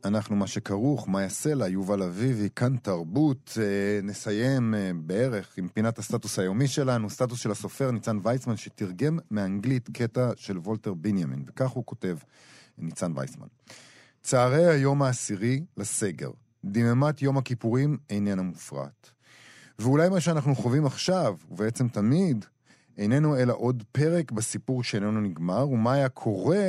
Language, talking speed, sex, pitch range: Hebrew, 130 wpm, male, 105-135 Hz